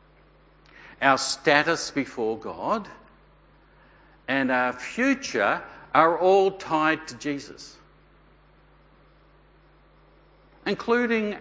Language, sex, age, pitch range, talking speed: English, male, 60-79, 120-170 Hz, 70 wpm